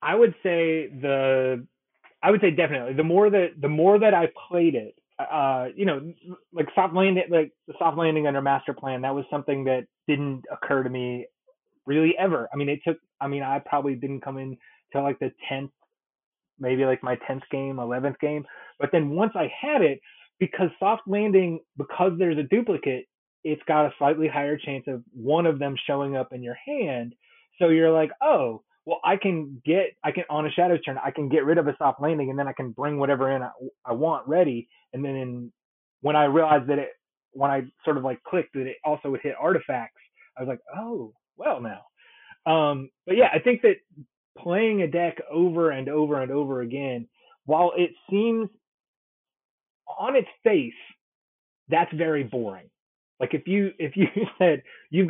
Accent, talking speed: American, 195 wpm